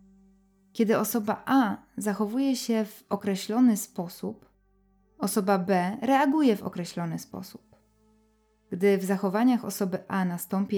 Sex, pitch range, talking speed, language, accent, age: female, 185-225 Hz, 110 wpm, Polish, native, 20-39